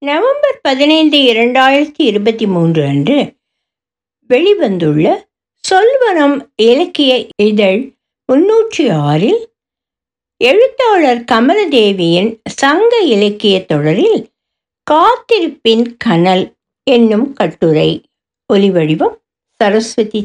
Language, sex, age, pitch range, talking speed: Tamil, female, 60-79, 205-320 Hz, 70 wpm